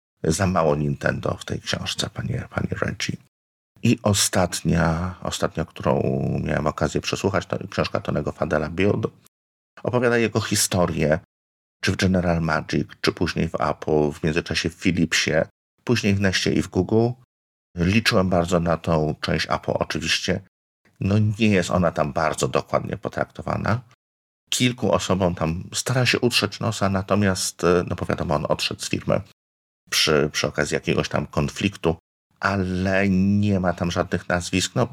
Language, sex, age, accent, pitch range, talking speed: Polish, male, 50-69, native, 75-95 Hz, 145 wpm